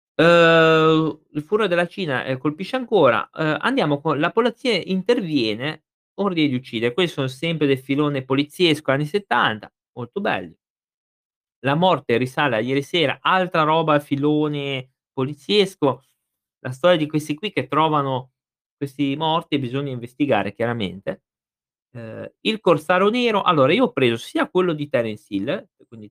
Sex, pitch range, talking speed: male, 120-170 Hz, 145 wpm